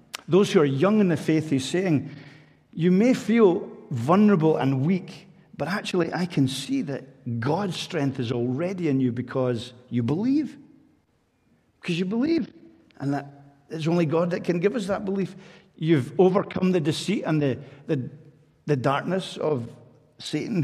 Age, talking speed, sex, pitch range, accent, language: 50-69, 160 wpm, male, 135-175 Hz, British, English